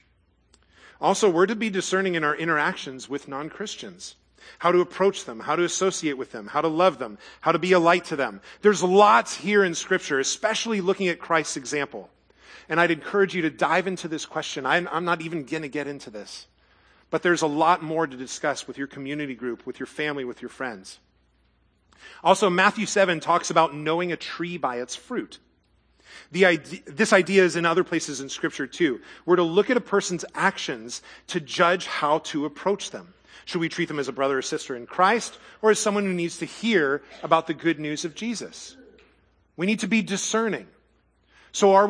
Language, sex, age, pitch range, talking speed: English, male, 40-59, 150-200 Hz, 200 wpm